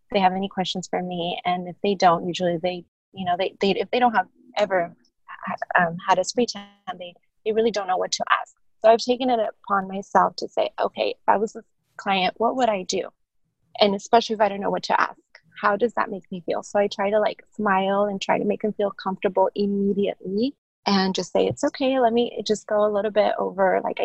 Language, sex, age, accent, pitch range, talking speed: English, female, 20-39, American, 185-220 Hz, 240 wpm